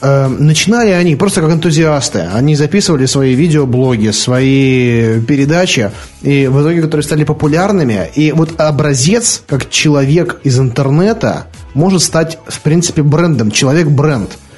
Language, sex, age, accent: Russian, male, 30-49, native